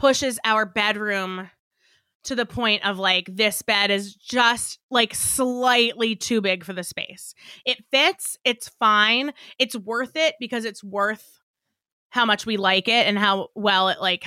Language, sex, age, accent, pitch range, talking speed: English, female, 20-39, American, 200-245 Hz, 165 wpm